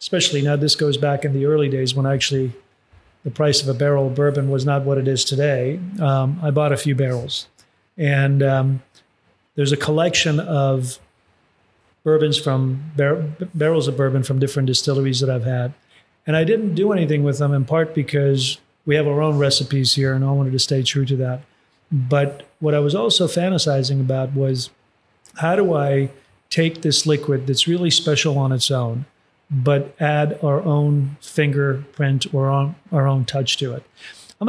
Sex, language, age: male, English, 40-59